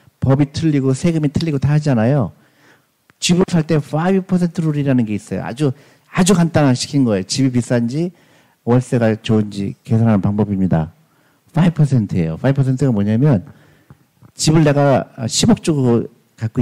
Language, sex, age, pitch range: Korean, male, 50-69, 120-155 Hz